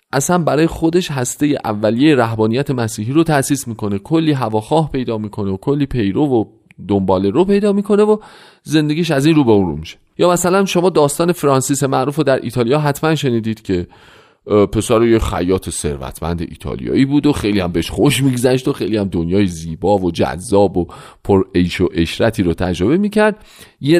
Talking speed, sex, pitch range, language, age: 180 wpm, male, 100-150 Hz, Persian, 40-59